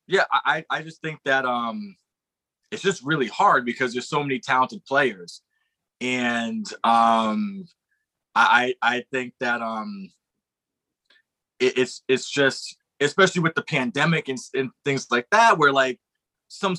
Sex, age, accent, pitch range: male, 20-39, American, 125-160 Hz